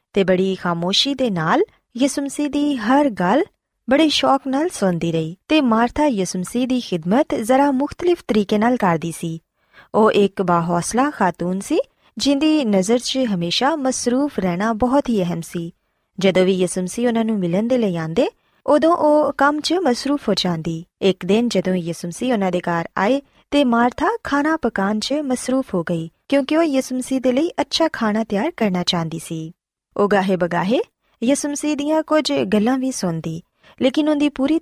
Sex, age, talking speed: female, 20-39, 155 wpm